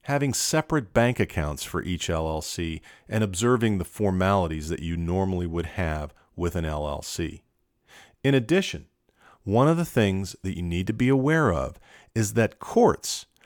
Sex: male